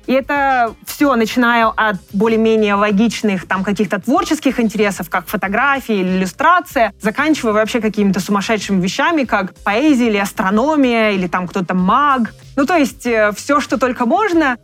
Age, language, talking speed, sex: 20-39, Russian, 145 wpm, female